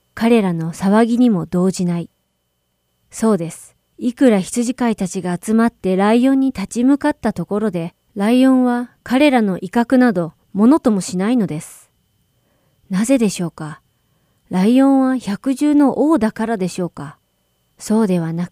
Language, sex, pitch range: Japanese, female, 180-250 Hz